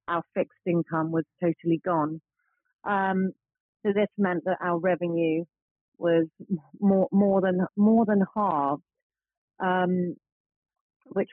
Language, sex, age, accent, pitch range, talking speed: English, female, 40-59, British, 170-200 Hz, 115 wpm